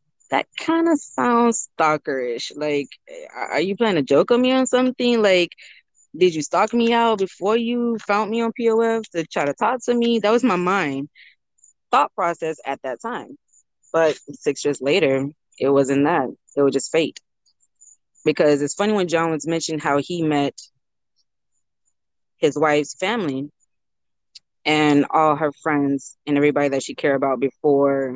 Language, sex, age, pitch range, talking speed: English, female, 20-39, 140-175 Hz, 165 wpm